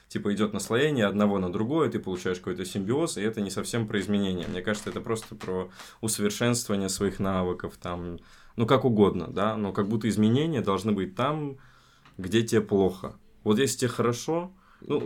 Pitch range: 95-115 Hz